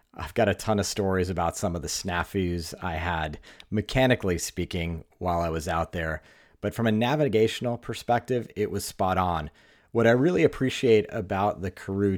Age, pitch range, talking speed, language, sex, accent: 40-59, 90-115 Hz, 175 wpm, English, male, American